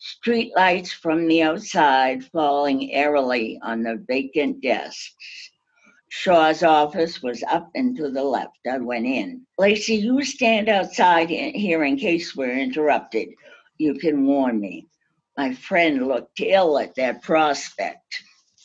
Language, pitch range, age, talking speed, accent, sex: English, 140-170 Hz, 60-79, 135 wpm, American, female